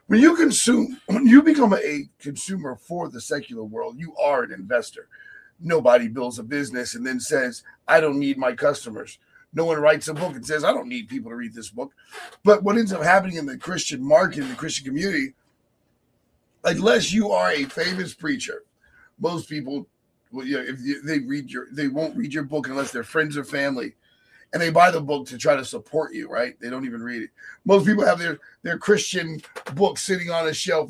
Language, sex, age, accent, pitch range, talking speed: English, male, 40-59, American, 145-235 Hz, 210 wpm